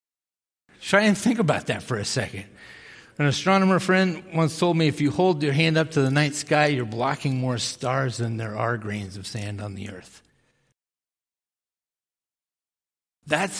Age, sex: 50-69, male